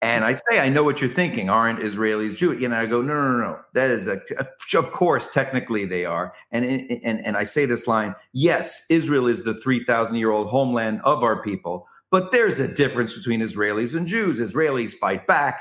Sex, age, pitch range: male, 50-69, 130-180 Hz